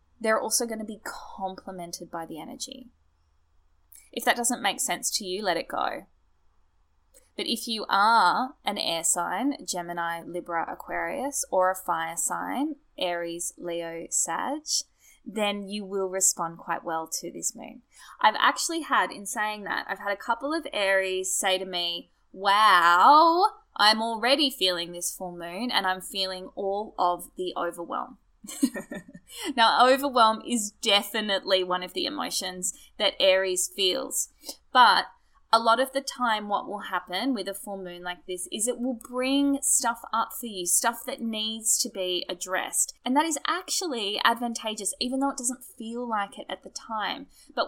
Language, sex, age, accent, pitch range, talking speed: English, female, 10-29, Australian, 180-250 Hz, 165 wpm